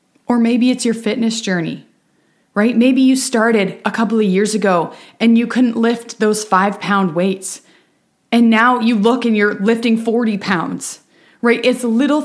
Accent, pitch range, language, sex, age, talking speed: American, 205-255 Hz, English, female, 20-39, 170 wpm